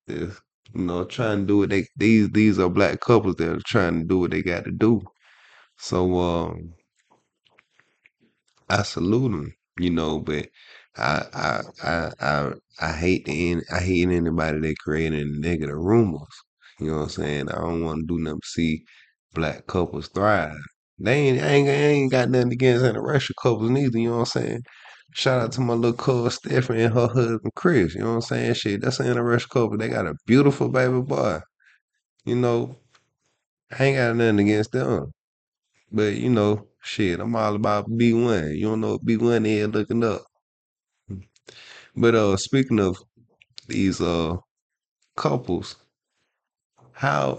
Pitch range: 85-120 Hz